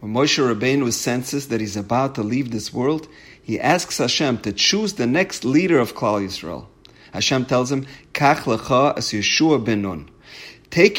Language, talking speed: English, 140 wpm